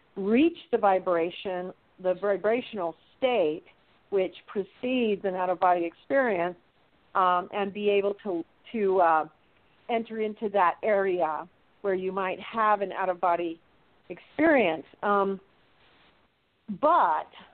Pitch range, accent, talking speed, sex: 185-235 Hz, American, 105 wpm, female